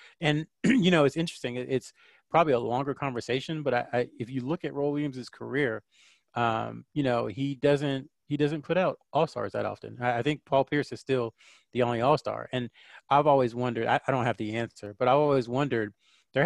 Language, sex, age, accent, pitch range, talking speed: English, male, 30-49, American, 115-135 Hz, 210 wpm